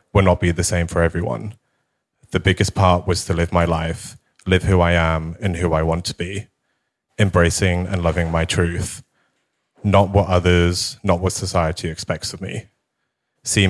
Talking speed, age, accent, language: 175 wpm, 30-49, British, English